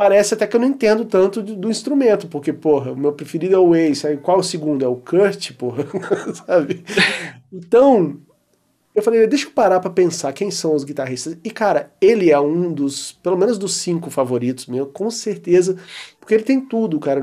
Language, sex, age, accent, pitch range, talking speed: Portuguese, male, 40-59, Brazilian, 130-180 Hz, 195 wpm